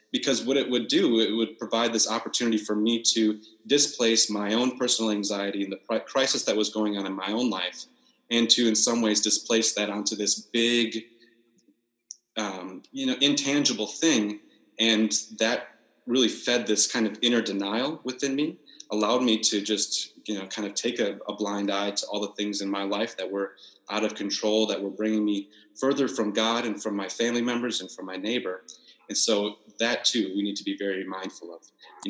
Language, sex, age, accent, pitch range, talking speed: English, male, 30-49, American, 100-115 Hz, 200 wpm